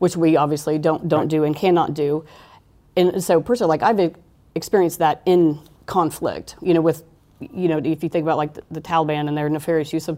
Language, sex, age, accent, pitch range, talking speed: English, female, 40-59, American, 150-170 Hz, 210 wpm